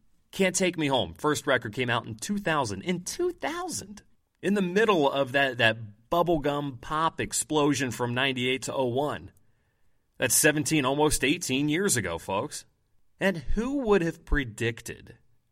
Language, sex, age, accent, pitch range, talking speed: English, male, 30-49, American, 110-155 Hz, 145 wpm